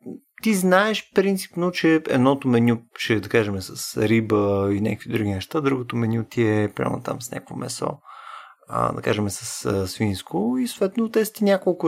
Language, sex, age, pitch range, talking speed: Bulgarian, male, 30-49, 105-160 Hz, 175 wpm